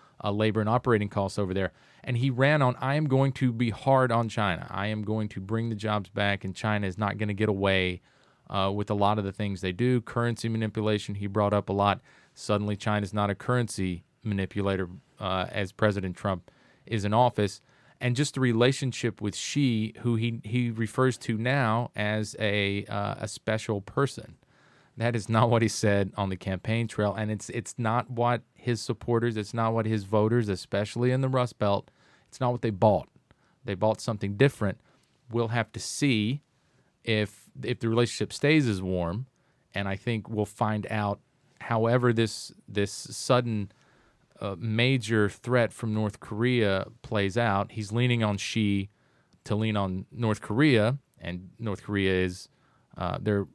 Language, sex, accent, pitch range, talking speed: English, male, American, 100-120 Hz, 180 wpm